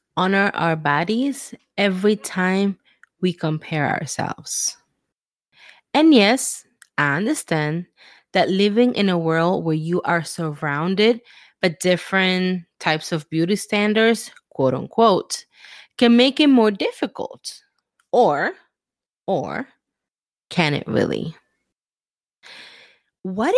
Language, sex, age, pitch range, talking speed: English, female, 20-39, 170-235 Hz, 100 wpm